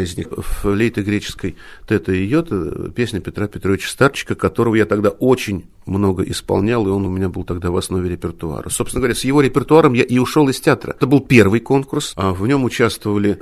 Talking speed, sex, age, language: 190 wpm, male, 50-69, Russian